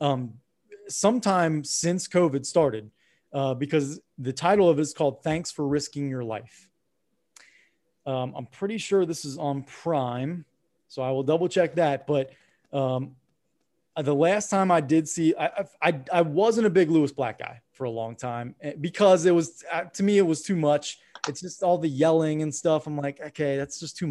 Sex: male